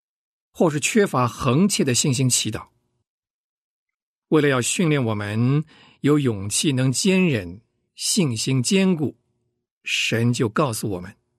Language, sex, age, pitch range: Chinese, male, 50-69, 115-150 Hz